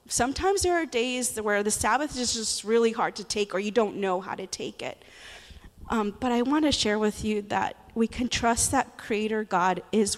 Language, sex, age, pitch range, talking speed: English, female, 20-39, 200-260 Hz, 220 wpm